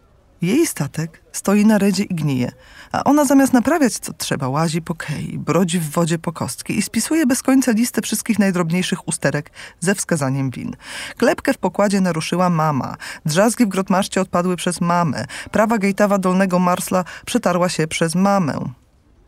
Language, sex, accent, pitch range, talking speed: Polish, female, native, 155-210 Hz, 160 wpm